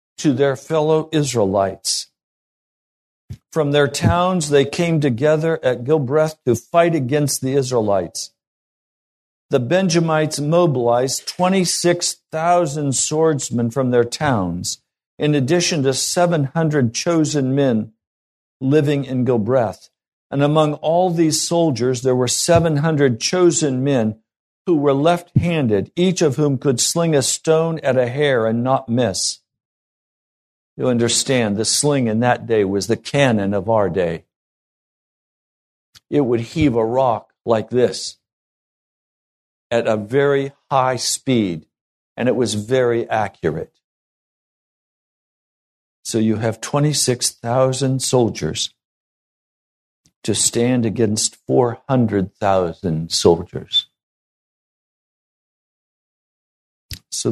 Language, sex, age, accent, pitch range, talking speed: English, male, 50-69, American, 115-155 Hz, 110 wpm